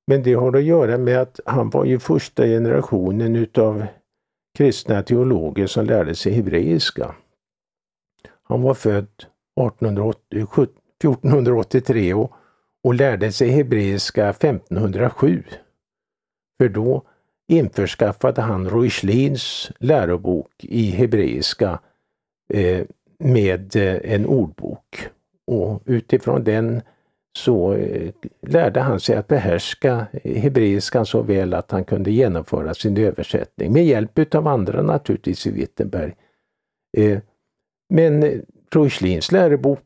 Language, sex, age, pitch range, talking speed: Swedish, male, 50-69, 100-130 Hz, 105 wpm